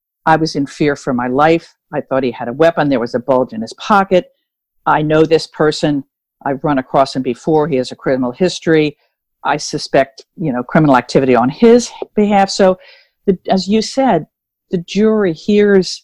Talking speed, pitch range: 190 wpm, 140-185 Hz